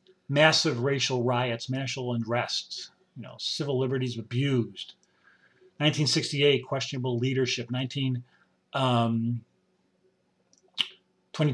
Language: English